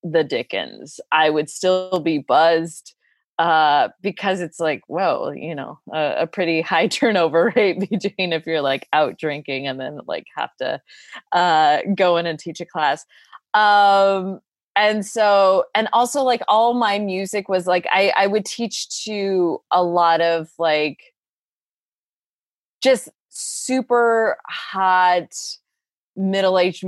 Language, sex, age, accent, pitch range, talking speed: English, female, 20-39, American, 165-230 Hz, 140 wpm